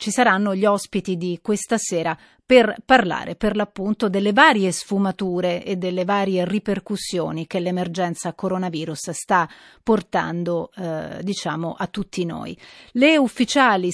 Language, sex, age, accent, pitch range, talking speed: Italian, female, 30-49, native, 180-220 Hz, 125 wpm